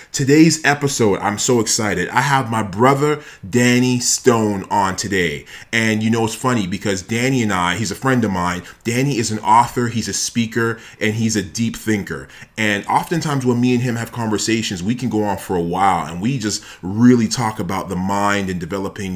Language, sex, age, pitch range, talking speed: English, male, 30-49, 100-125 Hz, 200 wpm